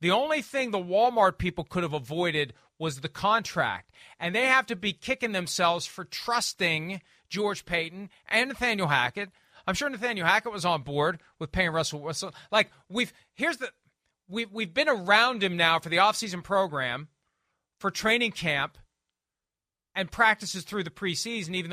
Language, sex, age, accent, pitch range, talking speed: English, male, 40-59, American, 160-235 Hz, 165 wpm